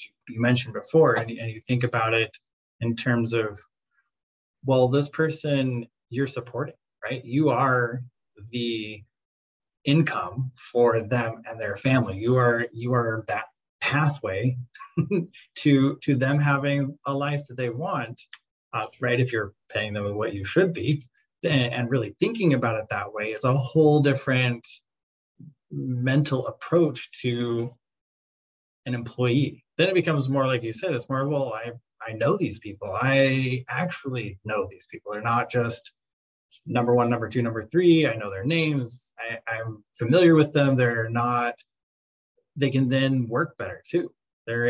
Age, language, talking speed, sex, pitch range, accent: 20-39, English, 155 wpm, male, 115-140 Hz, American